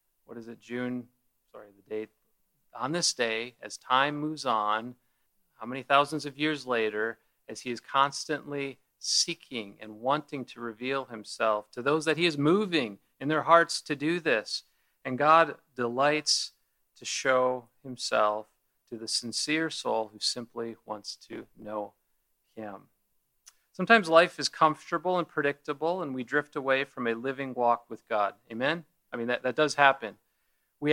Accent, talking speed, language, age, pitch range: American, 160 wpm, English, 40-59, 125-160 Hz